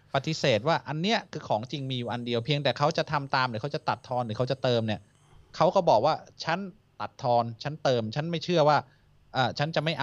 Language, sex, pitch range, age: Thai, male, 120-150 Hz, 20-39